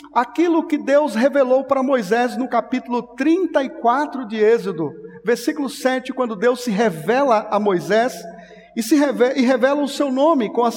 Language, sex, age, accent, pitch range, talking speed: Portuguese, male, 50-69, Brazilian, 205-265 Hz, 160 wpm